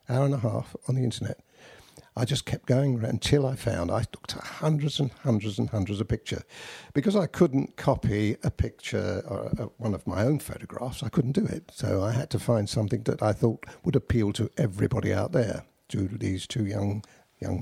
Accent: British